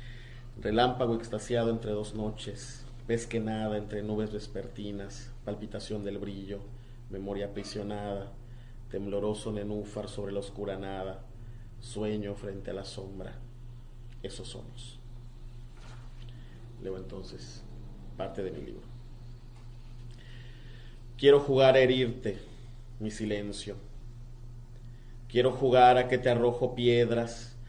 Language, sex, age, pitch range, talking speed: Spanish, male, 30-49, 105-120 Hz, 100 wpm